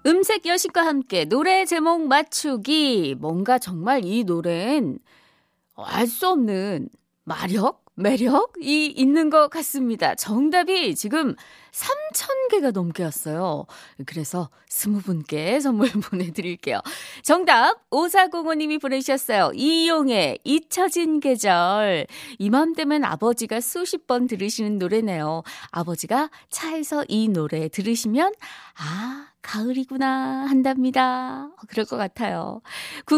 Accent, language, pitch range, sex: native, Korean, 195-305 Hz, female